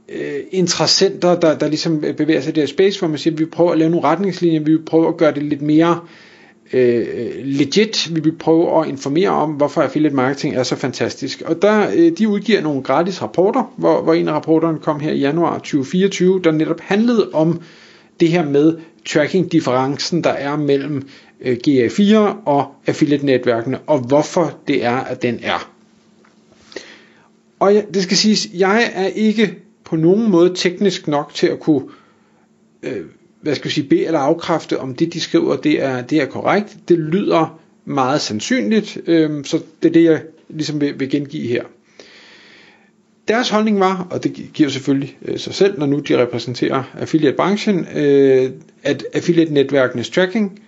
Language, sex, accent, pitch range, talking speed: Danish, male, native, 145-190 Hz, 180 wpm